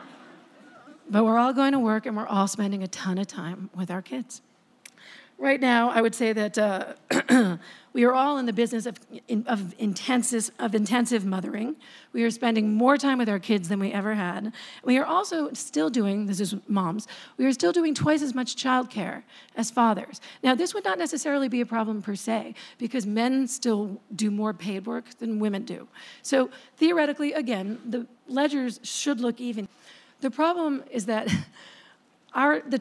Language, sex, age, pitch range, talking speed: English, female, 40-59, 210-260 Hz, 180 wpm